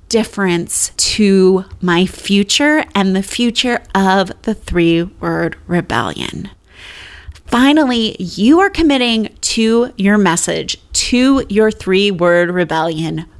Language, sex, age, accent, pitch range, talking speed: English, female, 30-49, American, 190-300 Hz, 100 wpm